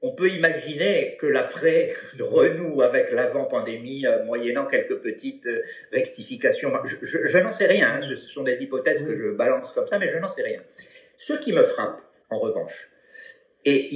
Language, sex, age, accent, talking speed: French, male, 50-69, French, 170 wpm